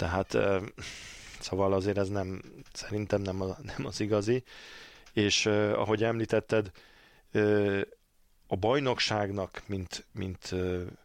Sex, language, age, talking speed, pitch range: male, Hungarian, 40-59, 90 wpm, 95-110 Hz